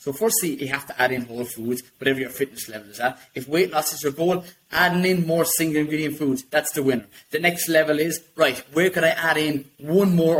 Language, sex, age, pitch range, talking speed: English, male, 20-39, 140-190 Hz, 235 wpm